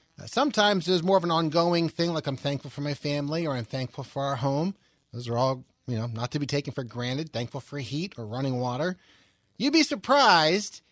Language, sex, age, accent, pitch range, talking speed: English, male, 30-49, American, 130-175 Hz, 215 wpm